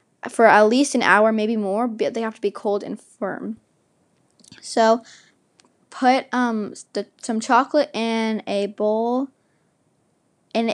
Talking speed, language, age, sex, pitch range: 135 wpm, English, 10-29, female, 210-240 Hz